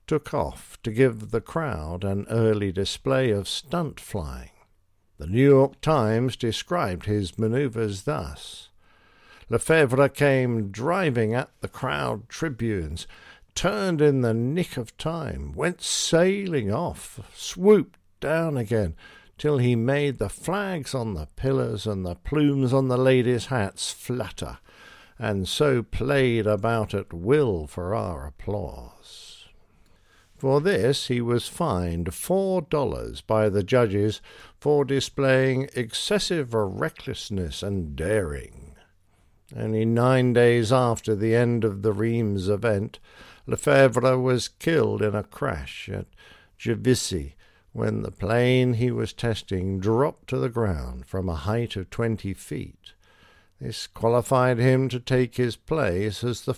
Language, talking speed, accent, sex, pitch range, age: English, 130 wpm, British, male, 100-135 Hz, 60-79